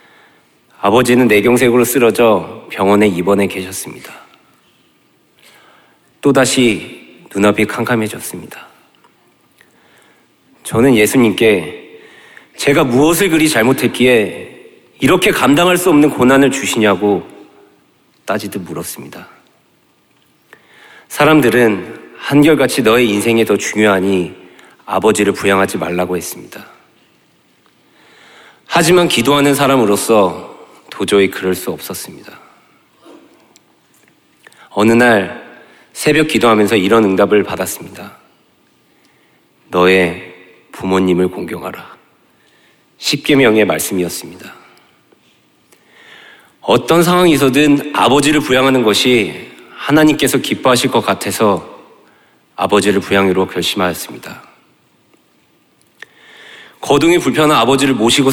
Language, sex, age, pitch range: Korean, male, 40-59, 100-140 Hz